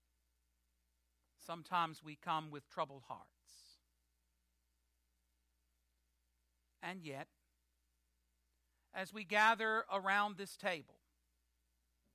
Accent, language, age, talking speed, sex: American, English, 60-79, 70 wpm, male